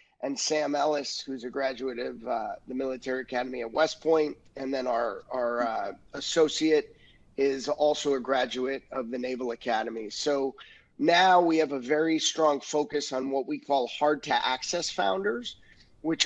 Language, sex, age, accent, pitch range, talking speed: English, male, 30-49, American, 135-160 Hz, 165 wpm